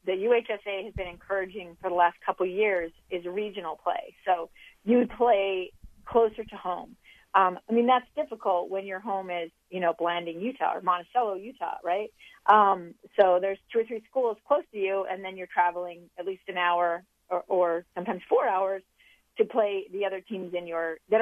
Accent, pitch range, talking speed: American, 180-225 Hz, 195 wpm